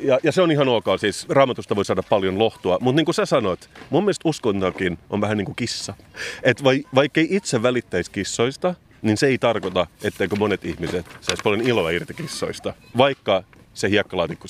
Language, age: Finnish, 30-49